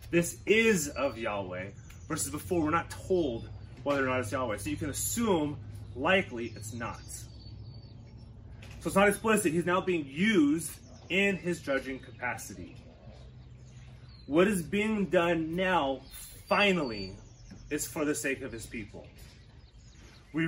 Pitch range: 115-175 Hz